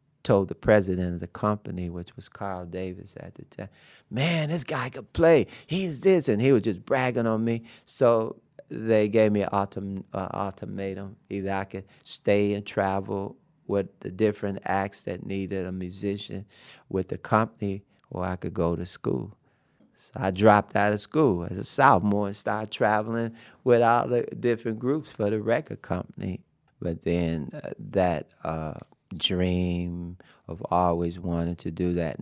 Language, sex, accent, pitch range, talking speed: English, male, American, 85-105 Hz, 170 wpm